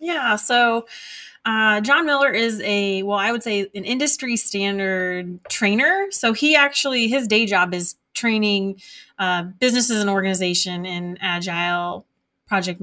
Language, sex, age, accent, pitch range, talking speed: English, female, 20-39, American, 195-235 Hz, 140 wpm